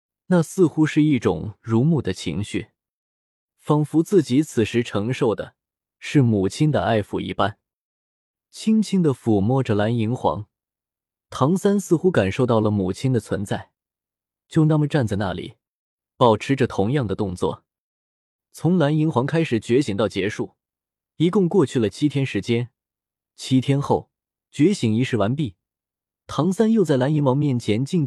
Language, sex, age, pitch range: Chinese, male, 20-39, 105-150 Hz